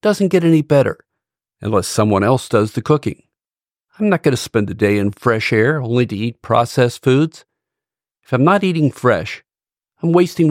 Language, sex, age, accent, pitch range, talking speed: English, male, 50-69, American, 115-155 Hz, 185 wpm